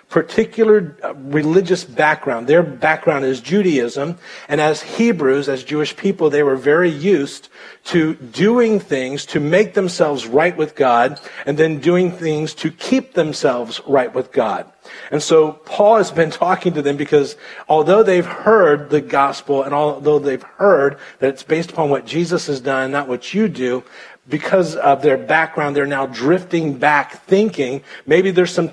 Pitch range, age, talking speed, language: 140-180 Hz, 40-59, 165 wpm, English